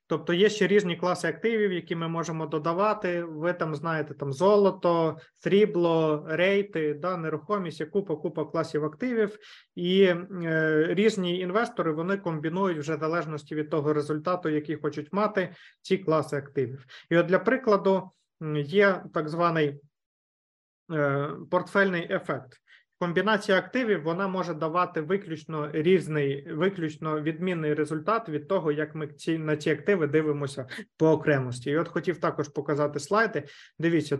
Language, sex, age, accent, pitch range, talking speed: Ukrainian, male, 20-39, native, 150-185 Hz, 135 wpm